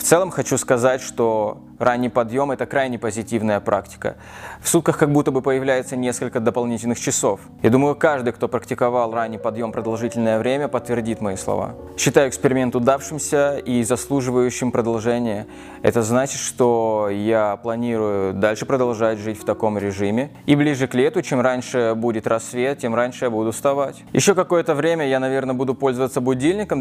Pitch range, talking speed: 115-135 Hz, 155 wpm